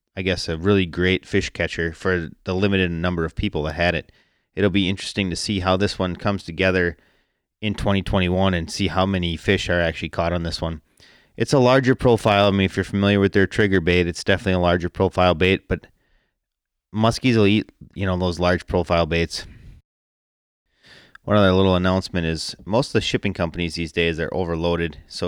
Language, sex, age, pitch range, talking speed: English, male, 30-49, 85-100 Hz, 195 wpm